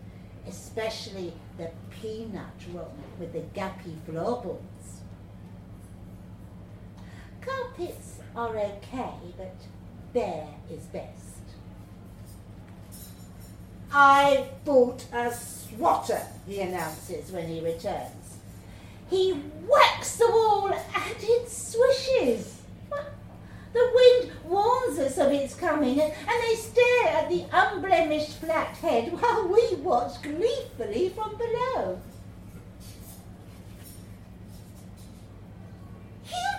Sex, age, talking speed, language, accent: female, 60-79, 80 wpm, English, British